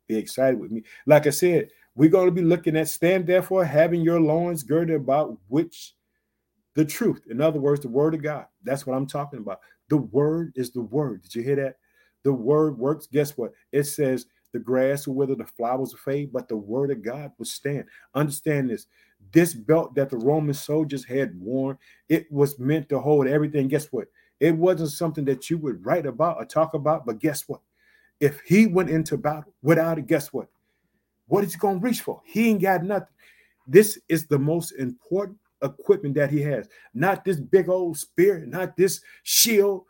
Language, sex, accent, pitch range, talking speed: English, male, American, 140-175 Hz, 200 wpm